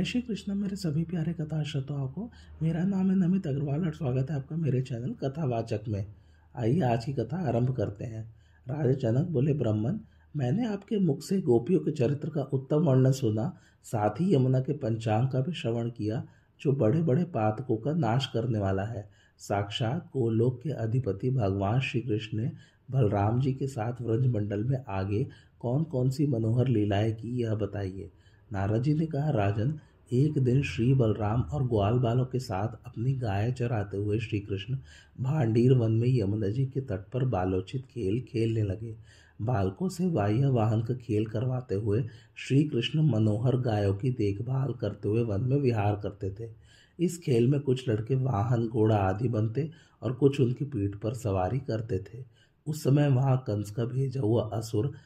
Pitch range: 110-140 Hz